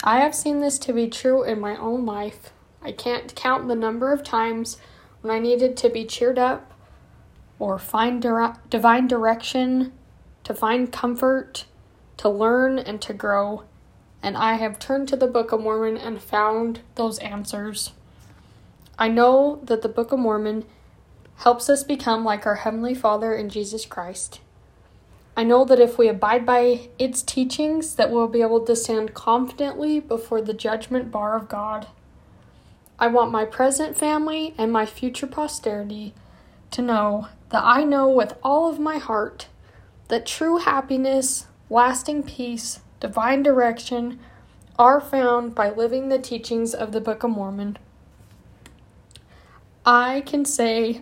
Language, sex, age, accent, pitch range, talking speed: English, female, 10-29, American, 220-260 Hz, 150 wpm